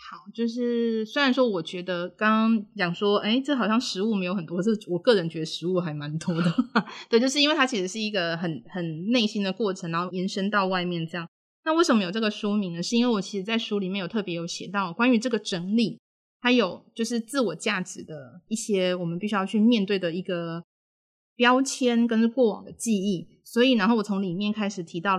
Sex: female